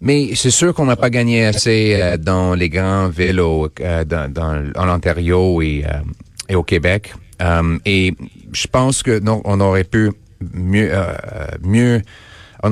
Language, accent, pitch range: French, Canadian, 90-110 Hz